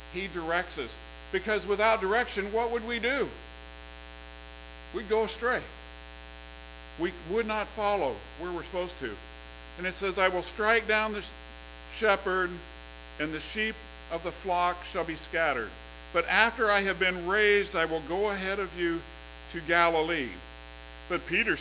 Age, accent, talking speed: 50-69, American, 155 wpm